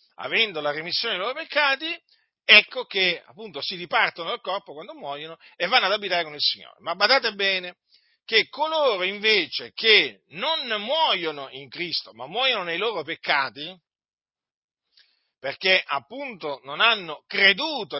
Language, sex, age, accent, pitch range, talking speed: Italian, male, 50-69, native, 165-240 Hz, 145 wpm